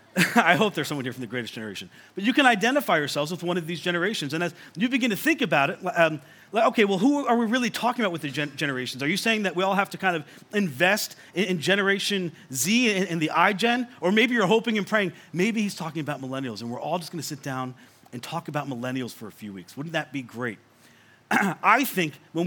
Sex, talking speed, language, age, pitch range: male, 250 wpm, English, 30-49, 150-195 Hz